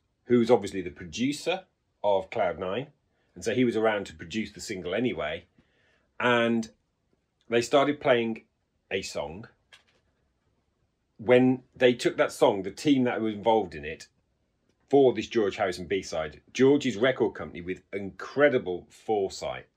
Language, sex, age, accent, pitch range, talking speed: English, male, 40-59, British, 95-125 Hz, 145 wpm